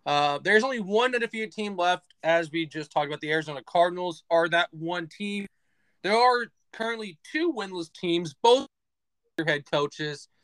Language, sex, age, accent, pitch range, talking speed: English, male, 20-39, American, 150-205 Hz, 160 wpm